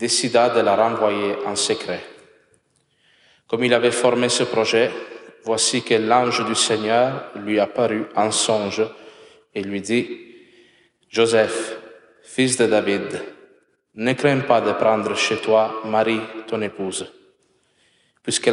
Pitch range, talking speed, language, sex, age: 105-130 Hz, 130 wpm, French, male, 20-39